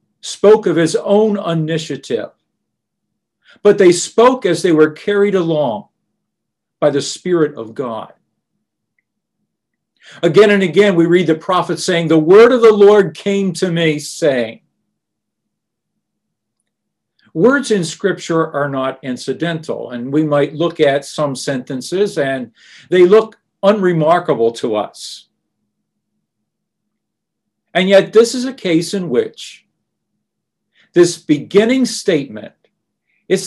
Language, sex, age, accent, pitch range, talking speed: English, male, 50-69, American, 150-205 Hz, 120 wpm